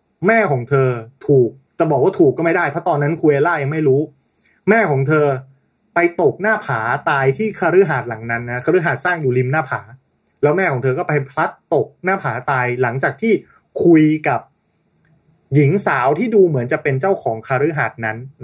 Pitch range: 130-170 Hz